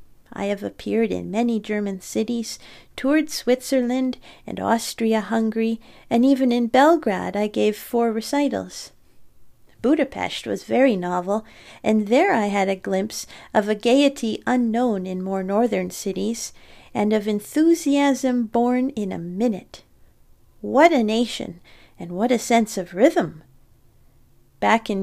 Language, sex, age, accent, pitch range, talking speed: English, female, 40-59, American, 200-255 Hz, 130 wpm